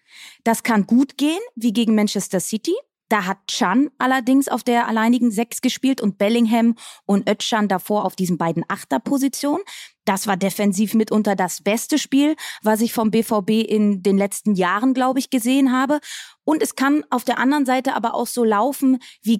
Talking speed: 175 wpm